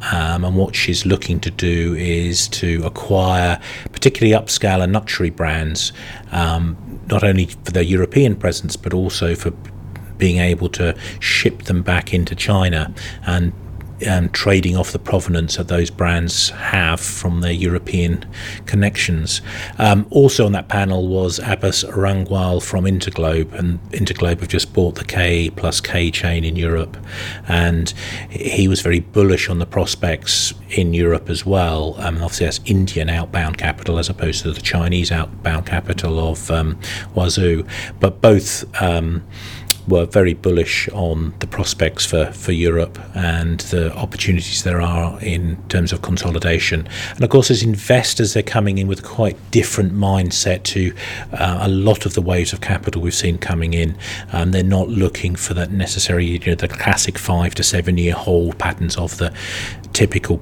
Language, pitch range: English, 85-100 Hz